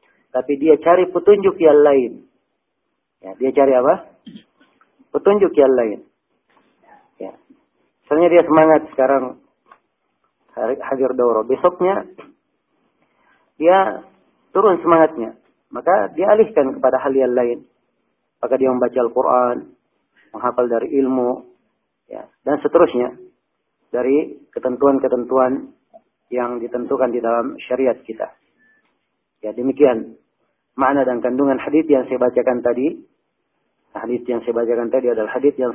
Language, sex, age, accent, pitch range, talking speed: Indonesian, male, 40-59, native, 125-140 Hz, 115 wpm